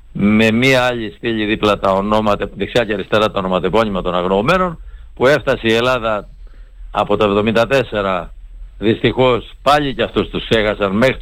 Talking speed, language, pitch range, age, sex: 150 wpm, Greek, 100-125 Hz, 60-79, male